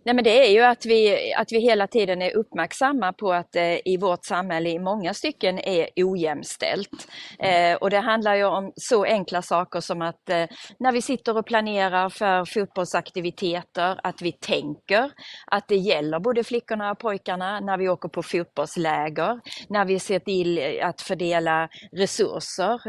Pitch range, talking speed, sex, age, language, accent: 170-230 Hz, 170 wpm, female, 30-49, Swedish, native